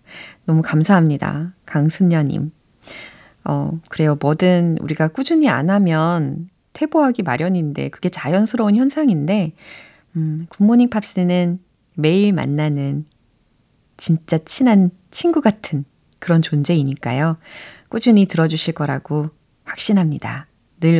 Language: Korean